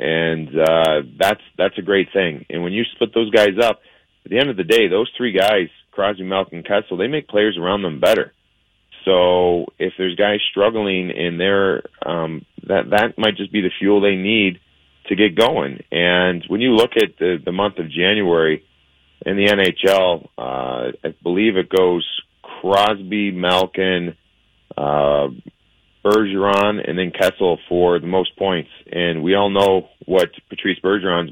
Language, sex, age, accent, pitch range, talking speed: English, male, 30-49, American, 85-100 Hz, 170 wpm